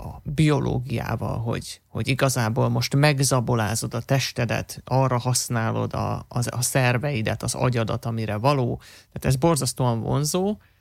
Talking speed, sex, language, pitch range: 130 wpm, male, Hungarian, 115-135 Hz